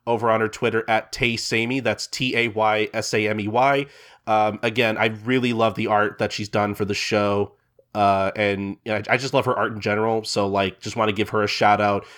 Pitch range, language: 105-140 Hz, English